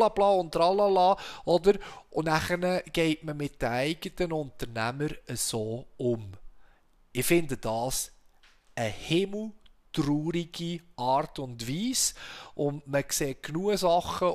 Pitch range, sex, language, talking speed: 155-205 Hz, male, German, 115 wpm